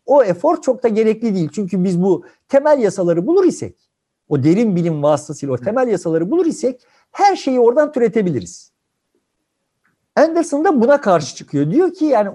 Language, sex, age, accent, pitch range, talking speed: Turkish, male, 60-79, native, 160-240 Hz, 165 wpm